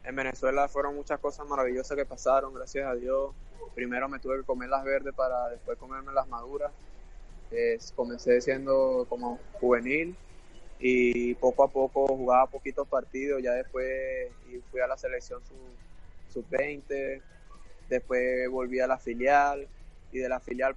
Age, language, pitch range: 20-39, Spanish, 125-140 Hz